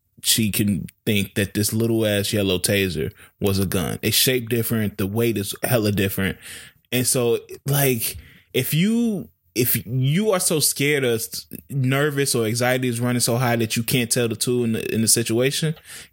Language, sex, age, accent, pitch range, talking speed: English, male, 20-39, American, 105-135 Hz, 180 wpm